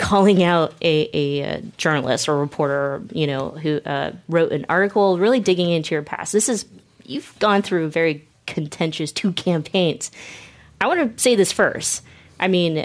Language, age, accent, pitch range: English, 30-49, American, 150-185 Hz